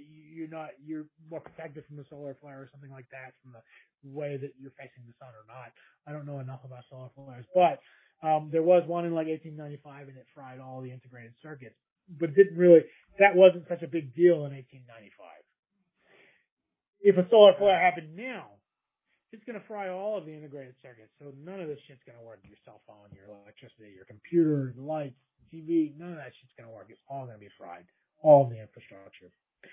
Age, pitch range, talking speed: 30-49, 130-165 Hz, 215 wpm